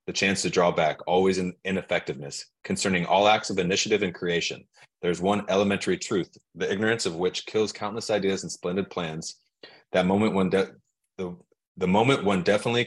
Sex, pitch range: male, 85-100 Hz